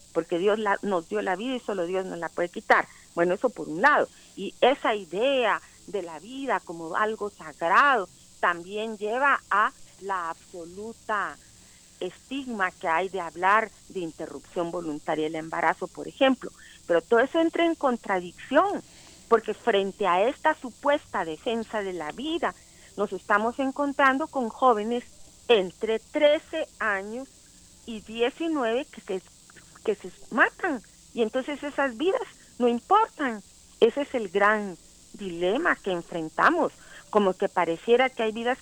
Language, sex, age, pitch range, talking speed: Spanish, female, 40-59, 185-260 Hz, 145 wpm